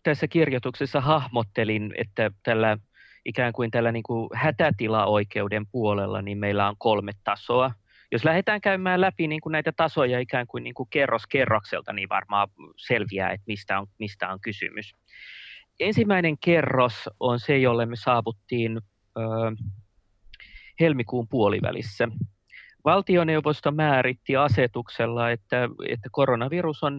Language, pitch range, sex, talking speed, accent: Finnish, 105-140 Hz, male, 105 wpm, native